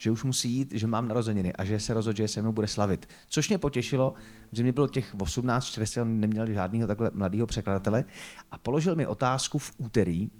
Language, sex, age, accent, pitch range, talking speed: Czech, male, 30-49, native, 110-140 Hz, 215 wpm